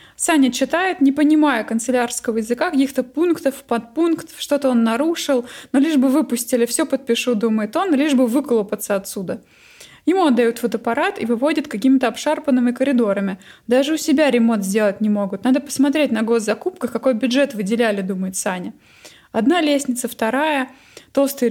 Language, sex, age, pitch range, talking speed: Russian, female, 20-39, 230-275 Hz, 145 wpm